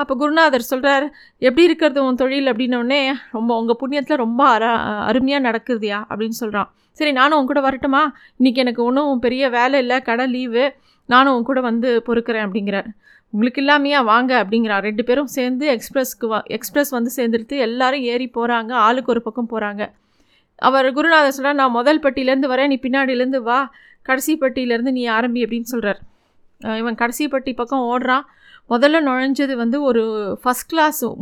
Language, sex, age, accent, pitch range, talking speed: Tamil, female, 30-49, native, 230-275 Hz, 150 wpm